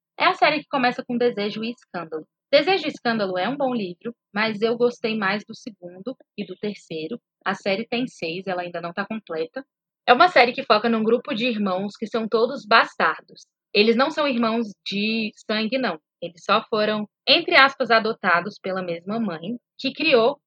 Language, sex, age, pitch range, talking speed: Portuguese, female, 20-39, 195-245 Hz, 190 wpm